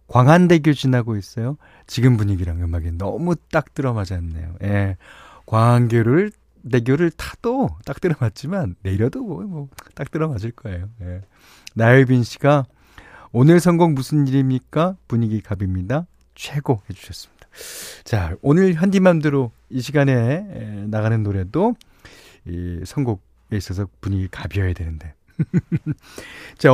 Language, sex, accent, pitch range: Korean, male, native, 100-150 Hz